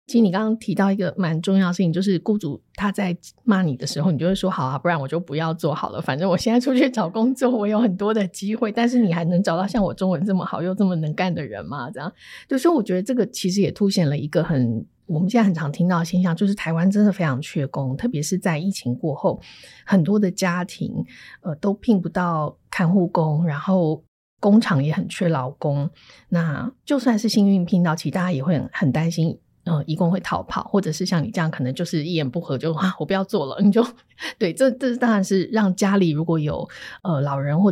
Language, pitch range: Chinese, 155-200 Hz